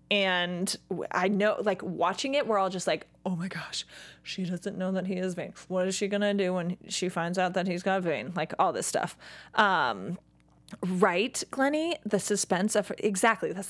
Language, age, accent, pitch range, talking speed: English, 20-39, American, 185-230 Hz, 205 wpm